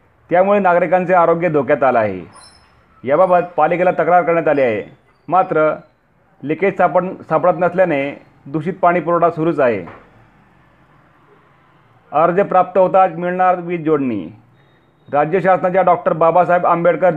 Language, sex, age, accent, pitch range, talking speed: Marathi, male, 40-59, native, 155-180 Hz, 110 wpm